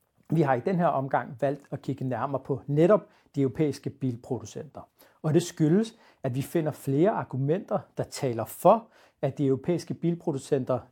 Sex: male